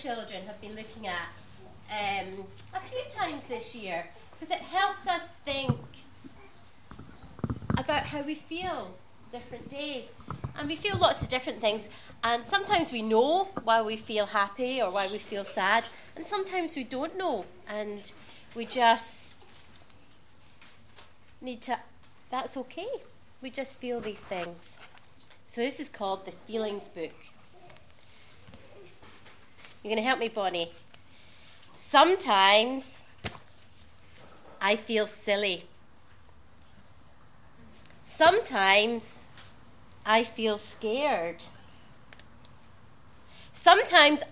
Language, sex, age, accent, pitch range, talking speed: English, female, 30-49, British, 170-255 Hz, 110 wpm